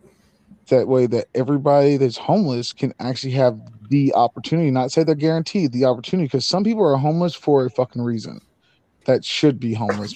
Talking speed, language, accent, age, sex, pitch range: 175 wpm, English, American, 20-39, male, 120-145 Hz